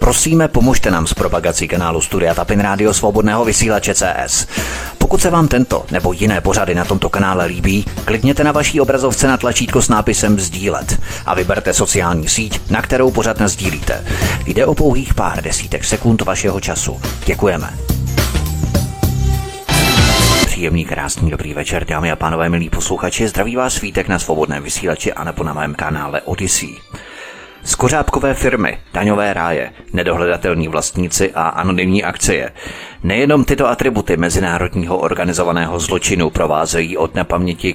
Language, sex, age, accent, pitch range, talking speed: Czech, male, 30-49, native, 85-110 Hz, 135 wpm